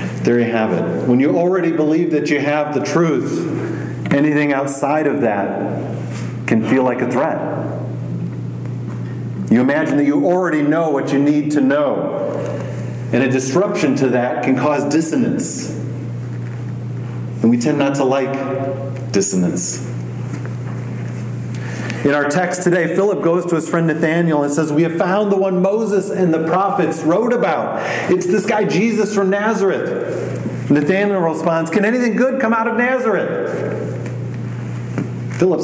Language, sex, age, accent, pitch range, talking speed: English, male, 40-59, American, 120-160 Hz, 145 wpm